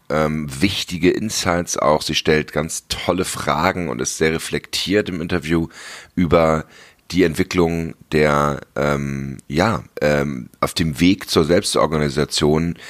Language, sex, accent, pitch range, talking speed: English, male, German, 75-85 Hz, 125 wpm